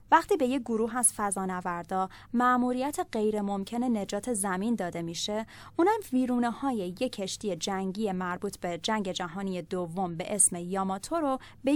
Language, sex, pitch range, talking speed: Persian, female, 200-275 Hz, 155 wpm